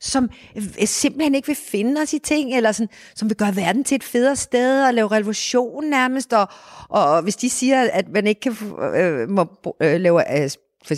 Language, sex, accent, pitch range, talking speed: Danish, female, native, 190-230 Hz, 195 wpm